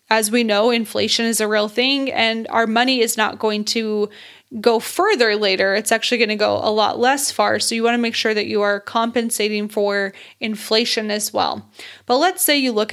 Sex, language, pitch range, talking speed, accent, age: female, English, 215-240 Hz, 215 wpm, American, 20-39